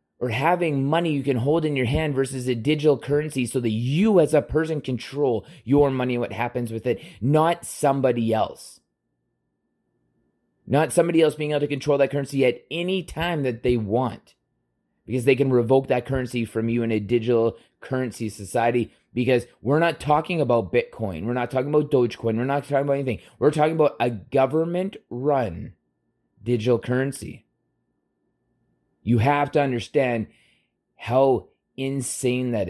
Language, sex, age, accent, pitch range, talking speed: English, male, 30-49, American, 115-145 Hz, 160 wpm